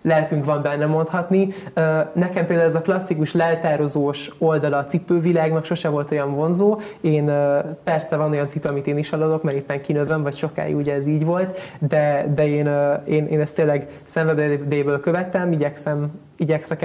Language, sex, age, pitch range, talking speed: Hungarian, male, 20-39, 150-165 Hz, 165 wpm